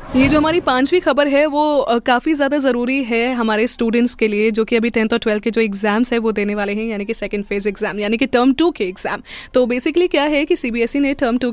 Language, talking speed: Hindi, 255 wpm